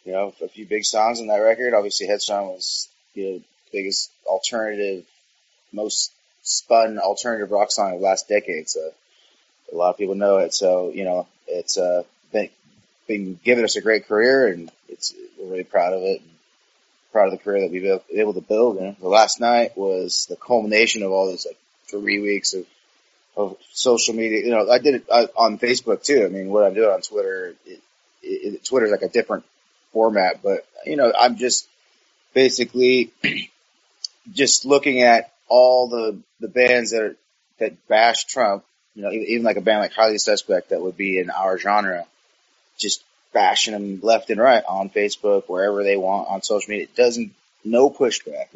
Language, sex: English, male